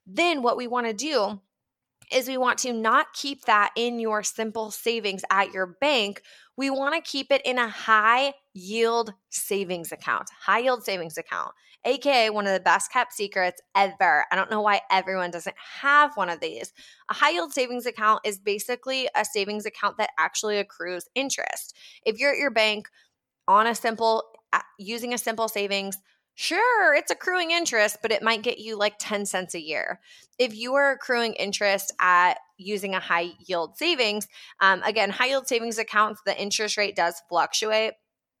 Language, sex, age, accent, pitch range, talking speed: English, female, 20-39, American, 190-245 Hz, 175 wpm